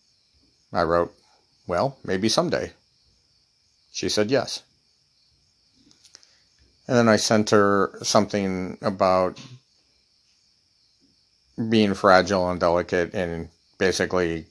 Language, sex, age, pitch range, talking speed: English, male, 50-69, 90-105 Hz, 85 wpm